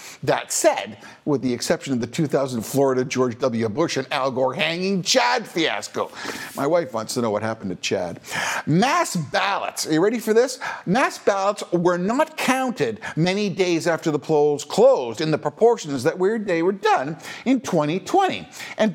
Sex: male